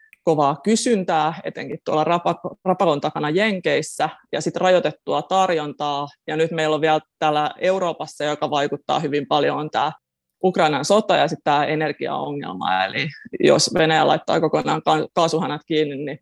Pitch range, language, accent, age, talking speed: 150-185 Hz, Finnish, native, 20-39, 135 wpm